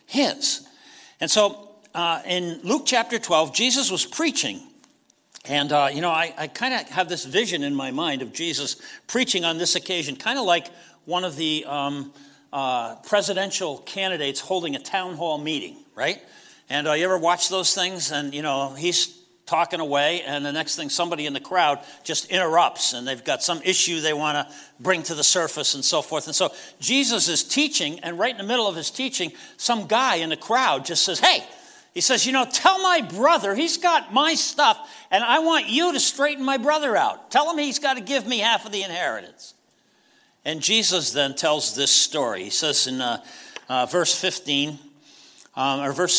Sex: male